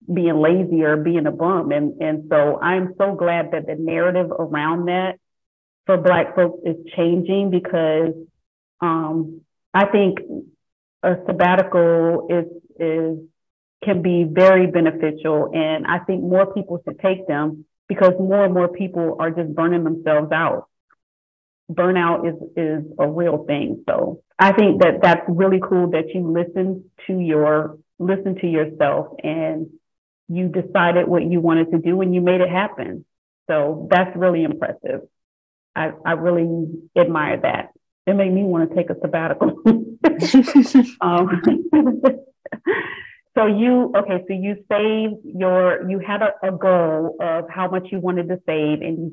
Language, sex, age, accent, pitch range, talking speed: English, female, 30-49, American, 165-190 Hz, 155 wpm